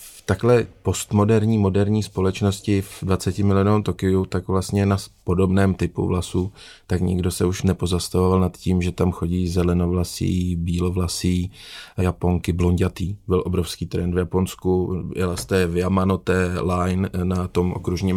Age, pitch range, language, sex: 30-49, 90-95 Hz, Czech, male